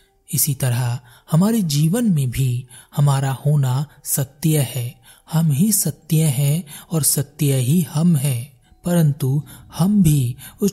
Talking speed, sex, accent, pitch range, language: 130 wpm, male, native, 135-170 Hz, Hindi